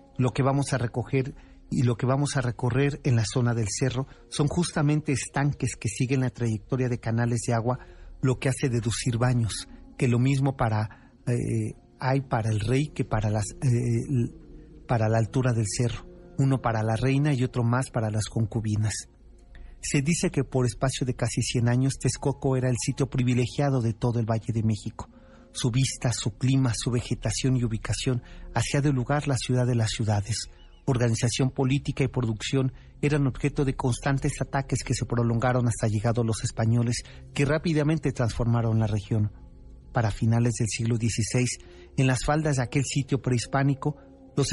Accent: Mexican